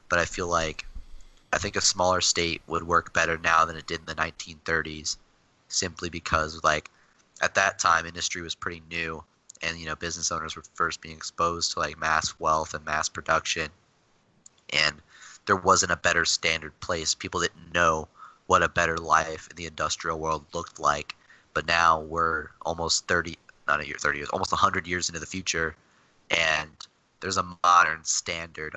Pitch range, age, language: 80-90 Hz, 30-49, English